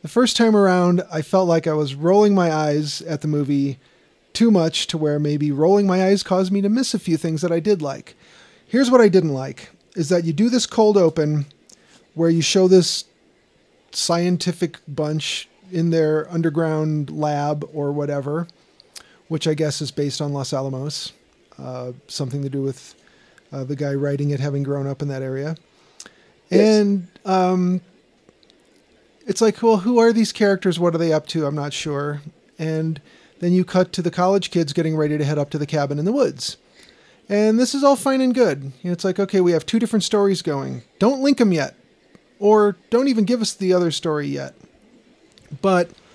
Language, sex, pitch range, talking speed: English, male, 150-200 Hz, 190 wpm